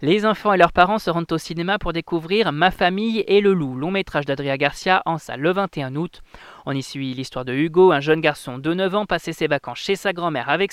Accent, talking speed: French, 245 wpm